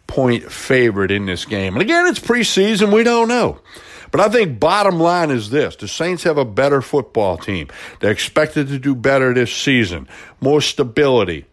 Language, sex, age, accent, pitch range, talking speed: English, male, 60-79, American, 110-160 Hz, 180 wpm